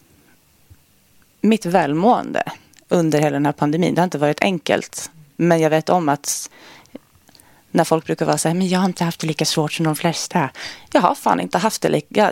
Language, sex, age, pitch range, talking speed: Swedish, female, 20-39, 150-185 Hz, 195 wpm